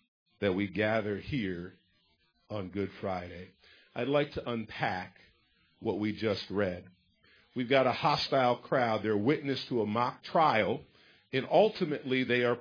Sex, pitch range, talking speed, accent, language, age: male, 115-180 Hz, 145 wpm, American, English, 50-69